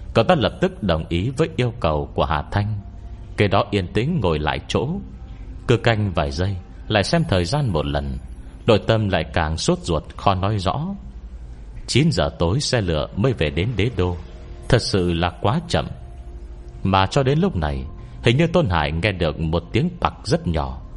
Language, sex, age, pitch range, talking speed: Vietnamese, male, 30-49, 75-115 Hz, 195 wpm